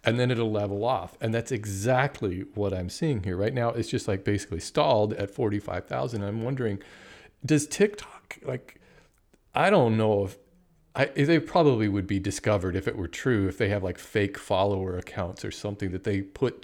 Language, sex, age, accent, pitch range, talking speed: English, male, 40-59, American, 105-150 Hz, 185 wpm